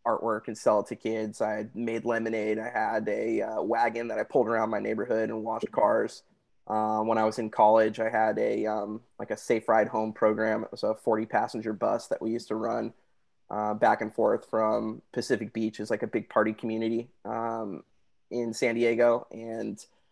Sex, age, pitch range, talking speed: male, 20-39, 110-120 Hz, 200 wpm